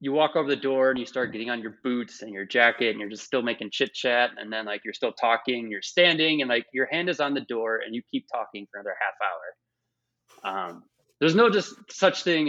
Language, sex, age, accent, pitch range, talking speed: English, male, 20-39, American, 105-135 Hz, 250 wpm